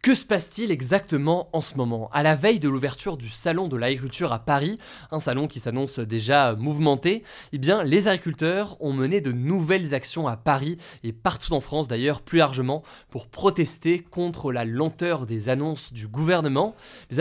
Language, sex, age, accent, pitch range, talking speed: French, male, 20-39, French, 130-165 Hz, 180 wpm